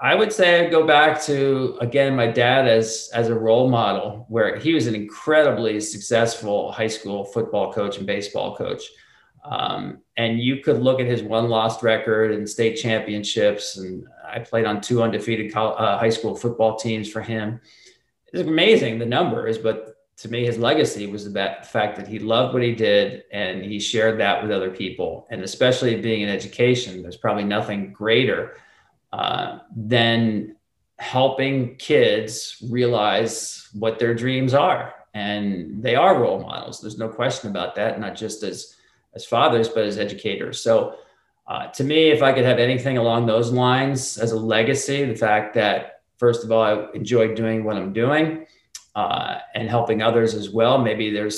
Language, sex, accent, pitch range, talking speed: English, male, American, 105-125 Hz, 175 wpm